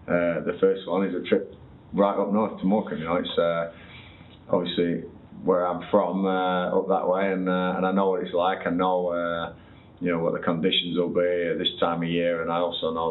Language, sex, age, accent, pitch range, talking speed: English, male, 30-49, British, 85-95 Hz, 230 wpm